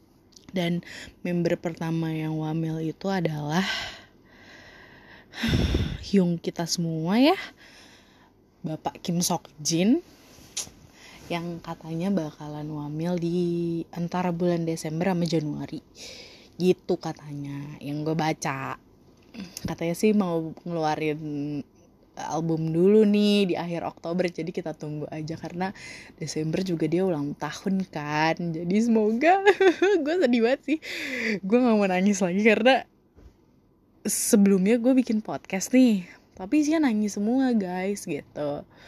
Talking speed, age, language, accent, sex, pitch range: 115 wpm, 20-39, Indonesian, native, female, 160-220 Hz